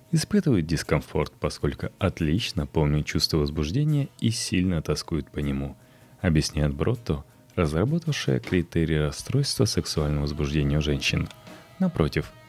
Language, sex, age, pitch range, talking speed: Russian, male, 30-49, 75-120 Hz, 105 wpm